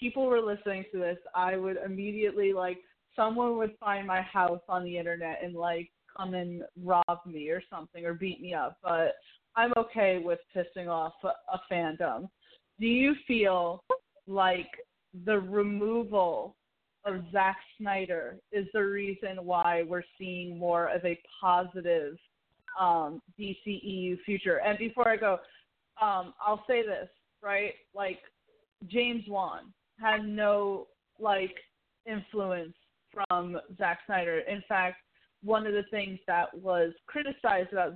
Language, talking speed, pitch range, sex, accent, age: English, 140 wpm, 180-210 Hz, female, American, 20-39